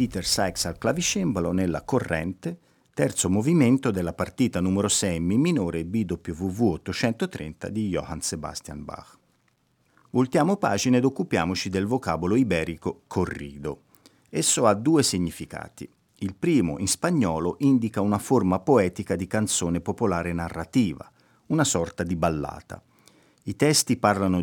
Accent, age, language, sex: native, 50-69, Italian, male